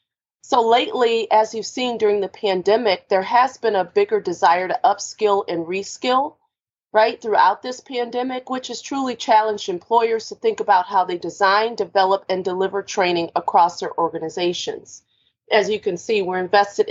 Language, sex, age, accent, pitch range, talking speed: English, female, 40-59, American, 185-245 Hz, 165 wpm